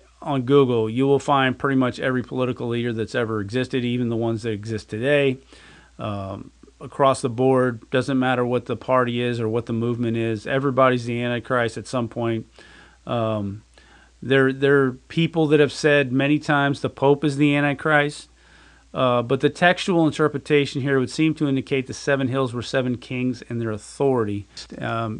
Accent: American